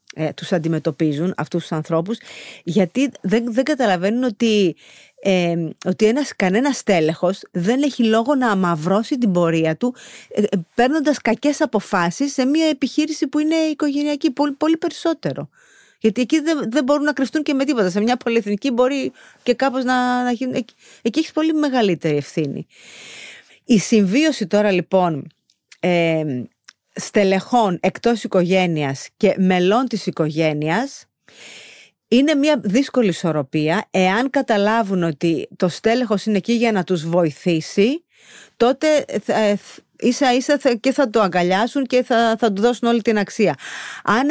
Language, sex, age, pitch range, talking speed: Greek, female, 30-49, 180-270 Hz, 140 wpm